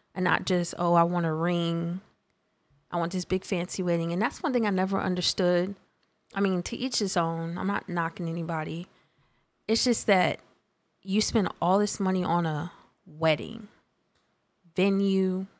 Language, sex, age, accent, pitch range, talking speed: English, female, 20-39, American, 170-195 Hz, 165 wpm